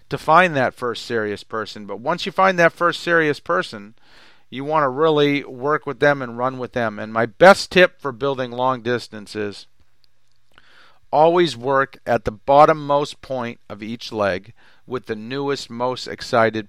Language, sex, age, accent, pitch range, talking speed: English, male, 40-59, American, 110-145 Hz, 170 wpm